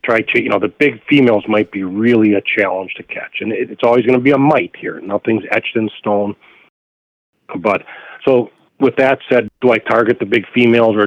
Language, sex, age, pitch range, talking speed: English, male, 40-59, 100-115 Hz, 210 wpm